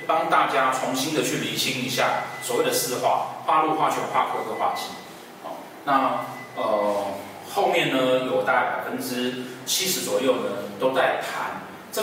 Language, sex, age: Chinese, male, 30-49